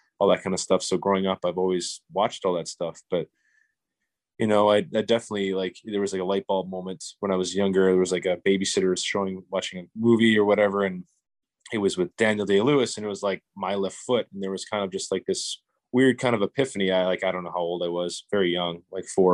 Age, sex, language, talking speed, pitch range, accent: 20-39, male, English, 250 wpm, 90-100 Hz, American